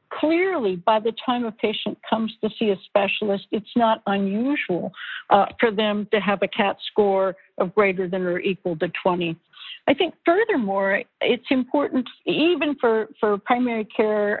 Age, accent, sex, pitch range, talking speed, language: 60-79, American, female, 200-250 Hz, 165 wpm, English